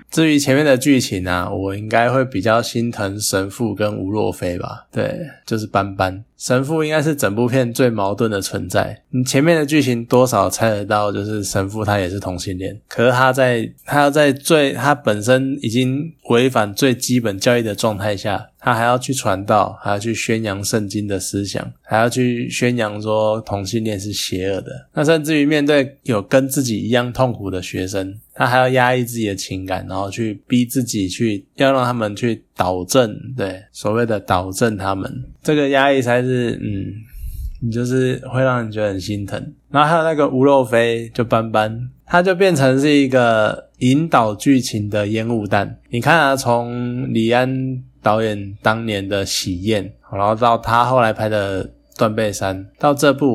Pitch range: 105-130 Hz